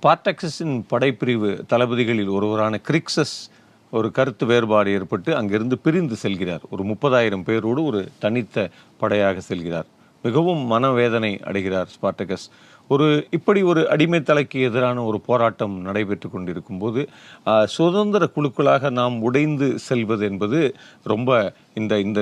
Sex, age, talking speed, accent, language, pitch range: male, 40-59, 110 wpm, native, Tamil, 105-150 Hz